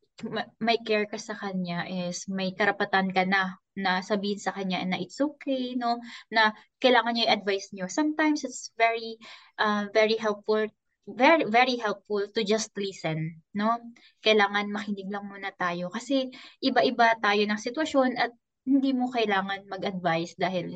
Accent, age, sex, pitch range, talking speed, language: native, 20-39, female, 190-225 Hz, 155 wpm, Filipino